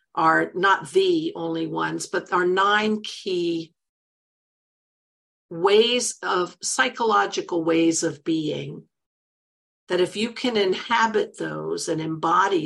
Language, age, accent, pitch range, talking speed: English, 50-69, American, 165-230 Hz, 110 wpm